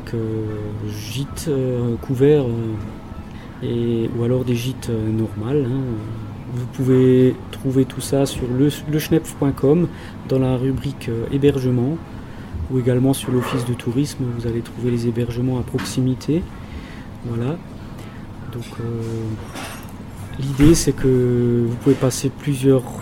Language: French